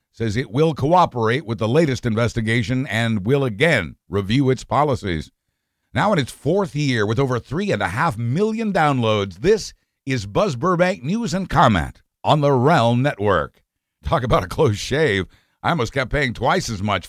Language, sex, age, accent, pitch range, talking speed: English, male, 60-79, American, 105-135 Hz, 175 wpm